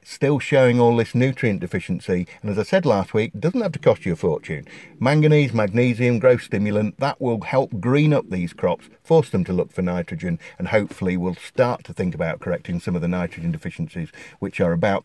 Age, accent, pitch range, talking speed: 50-69, British, 95-140 Hz, 210 wpm